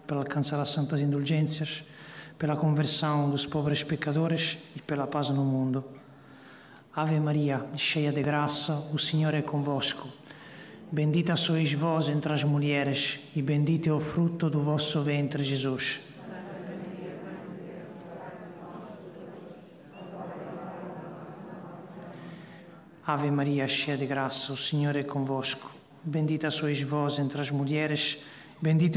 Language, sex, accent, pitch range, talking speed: Portuguese, male, Italian, 145-180 Hz, 115 wpm